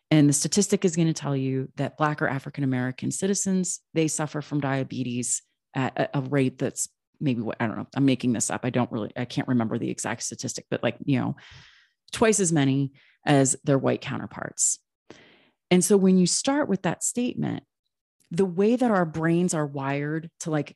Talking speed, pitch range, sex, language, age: 195 wpm, 135-175 Hz, female, English, 30-49